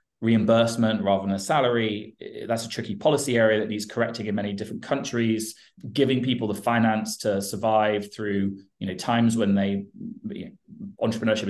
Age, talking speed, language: 20-39, 155 wpm, English